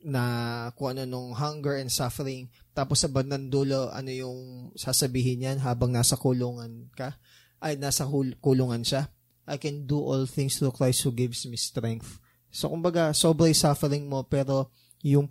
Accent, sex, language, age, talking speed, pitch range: Filipino, male, English, 20-39, 155 wpm, 125-165 Hz